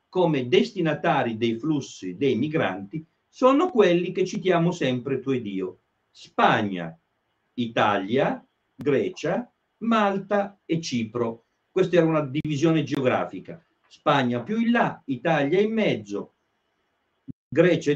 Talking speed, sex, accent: 110 wpm, male, native